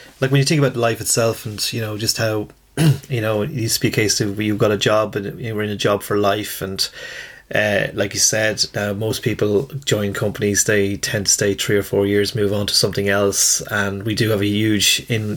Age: 30-49